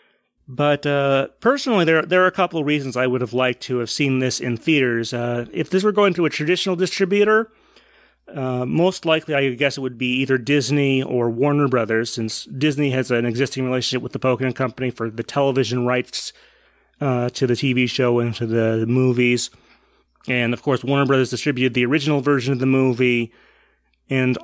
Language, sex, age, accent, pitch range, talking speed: English, male, 30-49, American, 125-150 Hz, 195 wpm